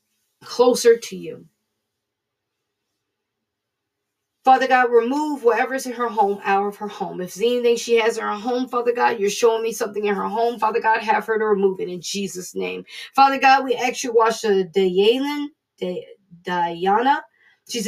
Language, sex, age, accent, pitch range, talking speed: English, female, 40-59, American, 210-265 Hz, 175 wpm